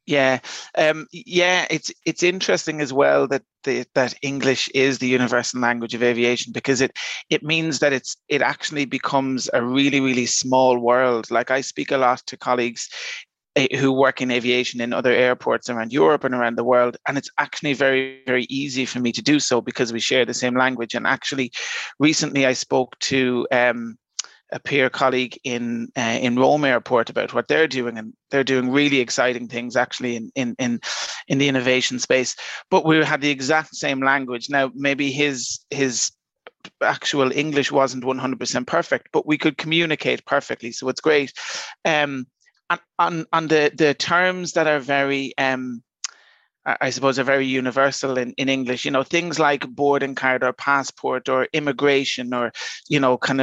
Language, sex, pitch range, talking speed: Italian, male, 125-150 Hz, 175 wpm